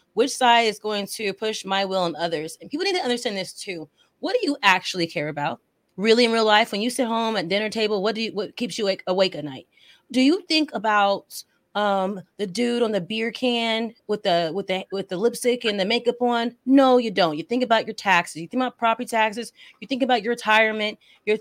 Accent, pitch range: American, 205-275 Hz